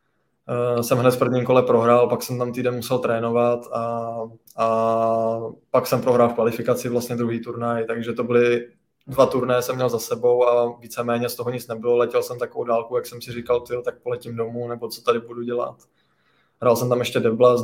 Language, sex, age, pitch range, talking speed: Czech, male, 20-39, 115-125 Hz, 210 wpm